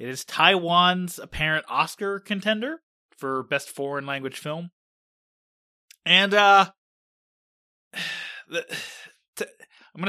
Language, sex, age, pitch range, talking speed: English, male, 30-49, 145-210 Hz, 90 wpm